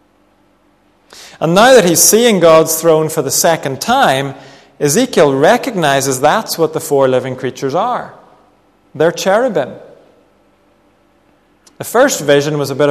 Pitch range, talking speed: 145-180 Hz, 130 wpm